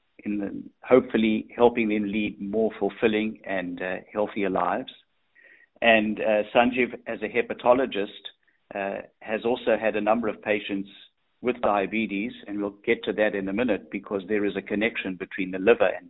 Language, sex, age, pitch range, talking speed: English, male, 50-69, 100-120 Hz, 165 wpm